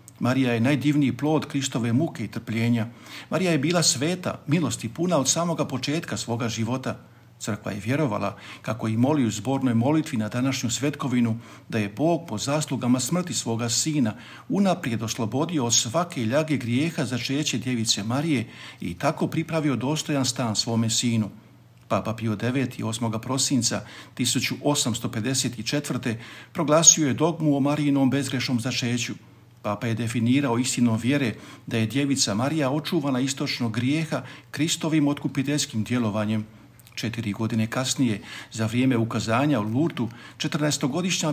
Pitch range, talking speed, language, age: 115-145 Hz, 135 wpm, Croatian, 50-69